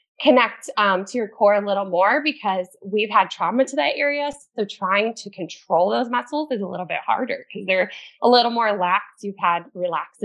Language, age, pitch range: English, 20-39, 185-255 Hz